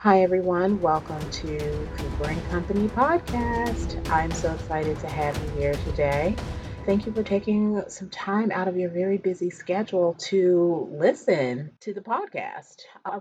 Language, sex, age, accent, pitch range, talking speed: English, female, 30-49, American, 140-185 Hz, 155 wpm